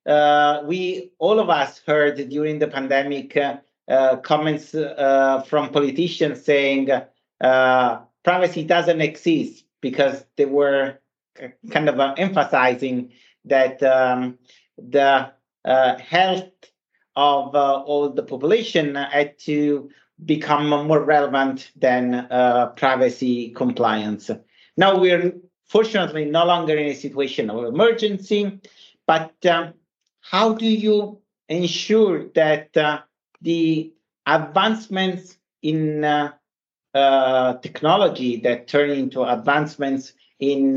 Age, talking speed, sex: 50-69, 110 wpm, male